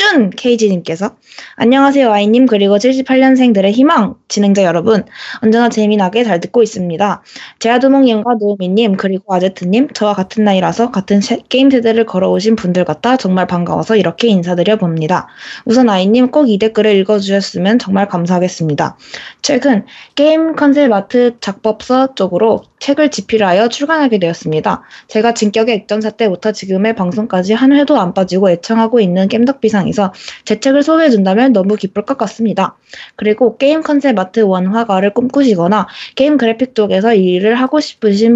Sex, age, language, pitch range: female, 20-39, Korean, 190-250 Hz